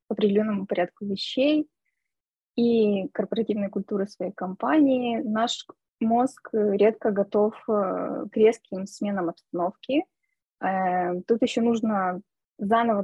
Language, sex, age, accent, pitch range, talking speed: Russian, female, 20-39, native, 195-230 Hz, 95 wpm